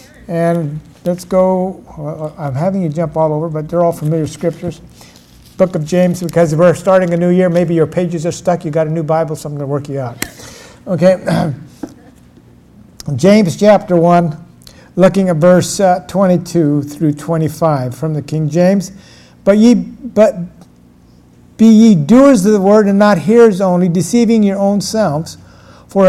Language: English